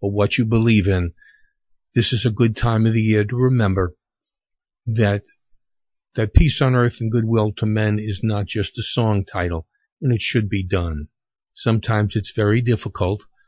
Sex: male